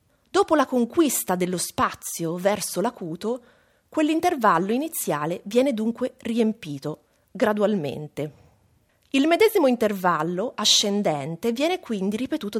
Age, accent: 30-49, native